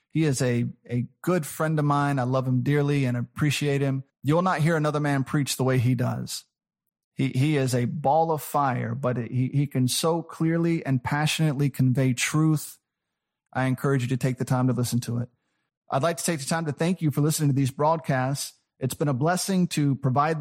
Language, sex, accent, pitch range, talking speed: English, male, American, 130-155 Hz, 220 wpm